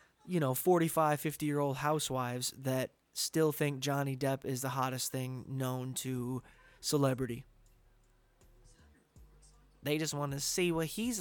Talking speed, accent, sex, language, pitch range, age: 130 wpm, American, male, English, 130-160 Hz, 20-39